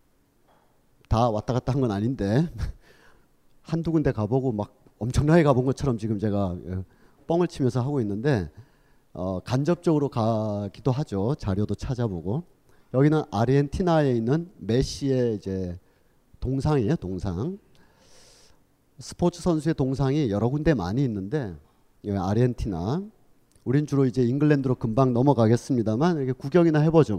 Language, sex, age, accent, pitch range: Korean, male, 40-59, native, 110-160 Hz